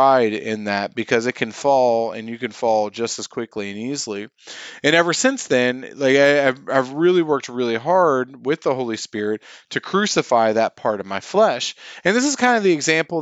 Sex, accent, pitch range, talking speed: male, American, 115-155 Hz, 205 wpm